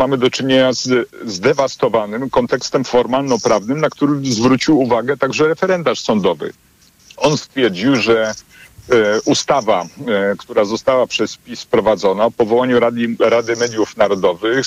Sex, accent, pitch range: male, native, 115-145 Hz